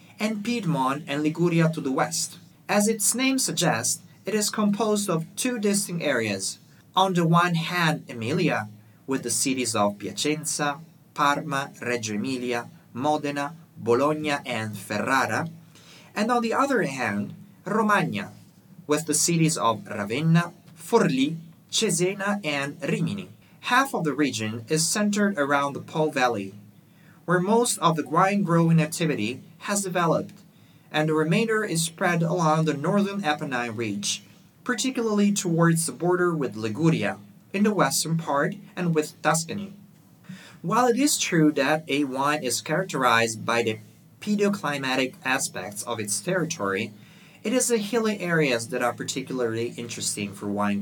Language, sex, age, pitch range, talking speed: English, male, 30-49, 135-185 Hz, 140 wpm